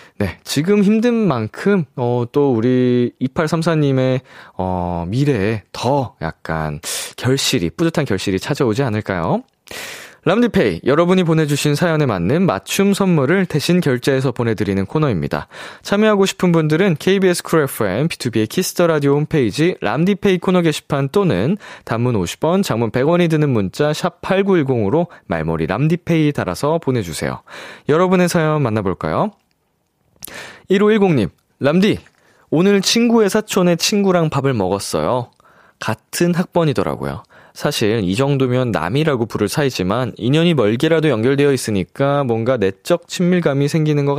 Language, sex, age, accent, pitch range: Korean, male, 20-39, native, 120-180 Hz